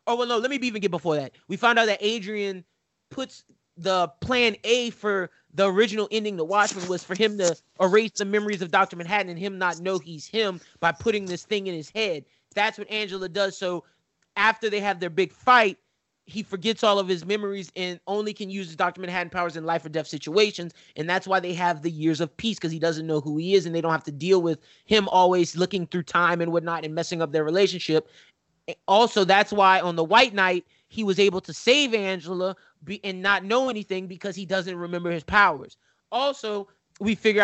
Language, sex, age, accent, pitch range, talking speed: English, male, 30-49, American, 175-210 Hz, 220 wpm